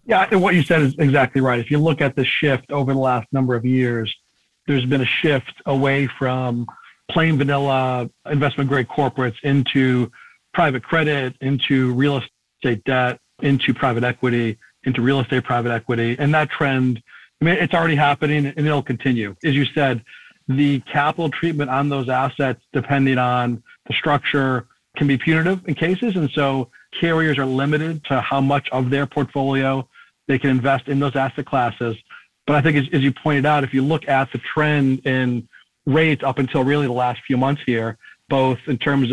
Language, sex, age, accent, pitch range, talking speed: English, male, 40-59, American, 125-145 Hz, 180 wpm